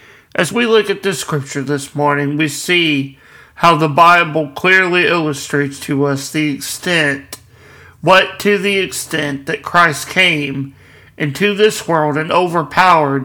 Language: English